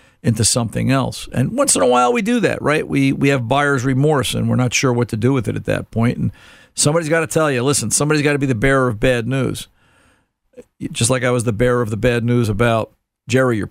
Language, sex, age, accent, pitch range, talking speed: English, male, 50-69, American, 115-140 Hz, 260 wpm